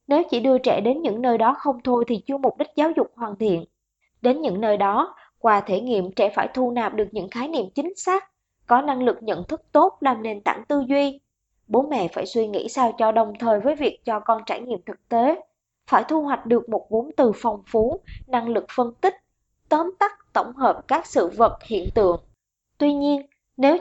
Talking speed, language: 220 wpm, Vietnamese